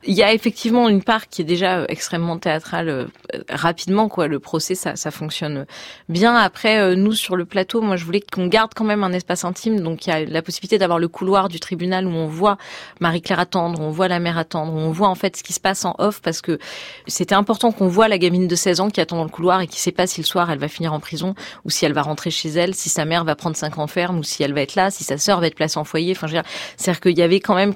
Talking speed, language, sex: 290 wpm, French, female